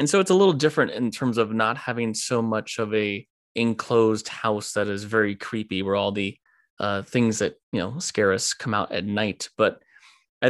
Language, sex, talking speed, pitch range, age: English, male, 210 wpm, 110-130 Hz, 20-39